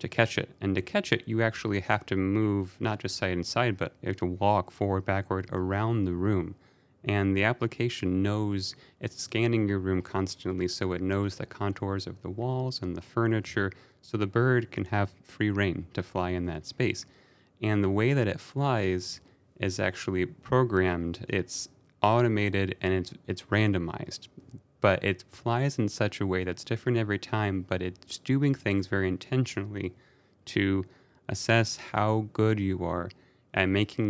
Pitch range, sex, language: 95-115 Hz, male, English